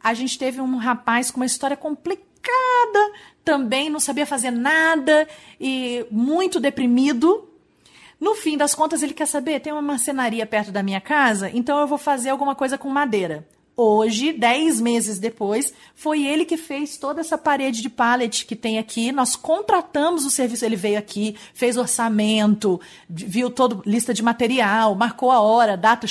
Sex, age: female, 40-59